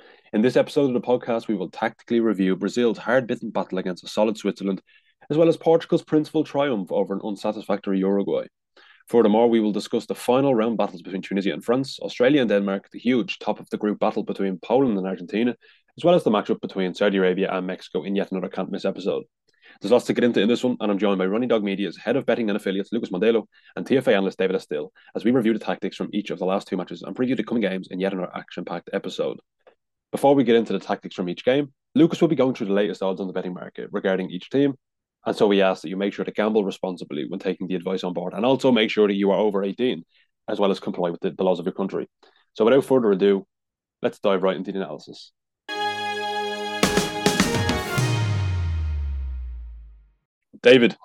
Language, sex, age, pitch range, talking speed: English, male, 20-39, 95-125 Hz, 215 wpm